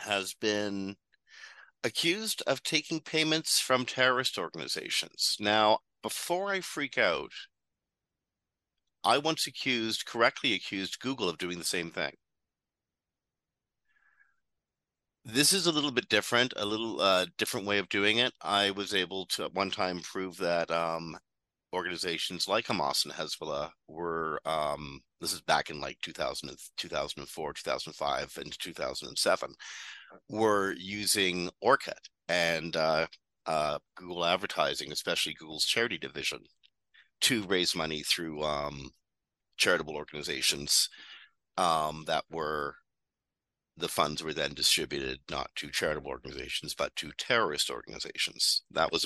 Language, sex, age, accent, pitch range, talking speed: English, male, 50-69, American, 85-130 Hz, 135 wpm